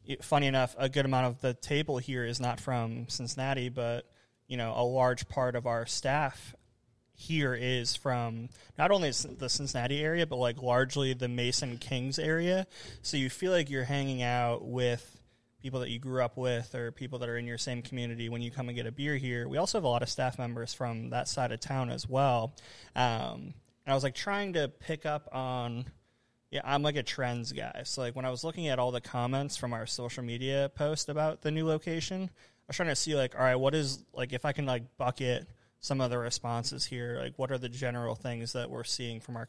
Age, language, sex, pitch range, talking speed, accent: 20-39, English, male, 120-135 Hz, 230 wpm, American